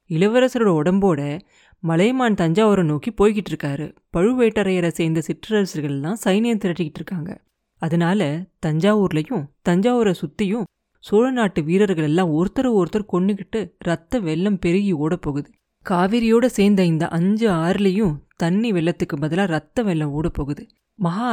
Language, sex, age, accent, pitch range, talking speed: Tamil, female, 30-49, native, 165-210 Hz, 110 wpm